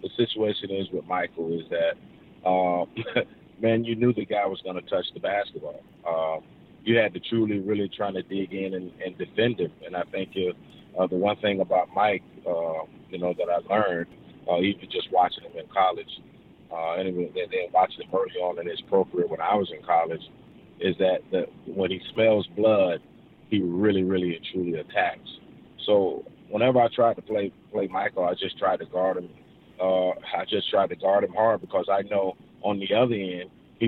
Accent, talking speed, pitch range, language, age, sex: American, 205 wpm, 90-105 Hz, English, 30-49, male